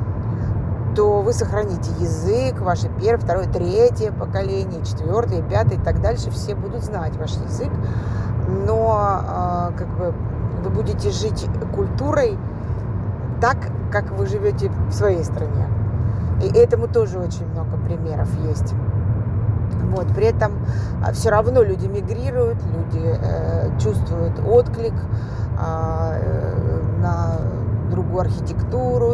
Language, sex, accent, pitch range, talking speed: Russian, female, native, 100-110 Hz, 110 wpm